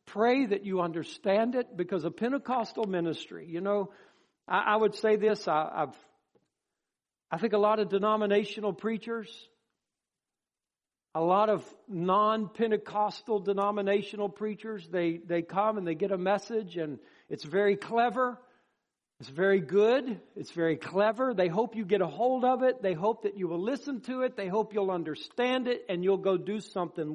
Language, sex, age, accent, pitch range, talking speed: English, male, 60-79, American, 175-225 Hz, 165 wpm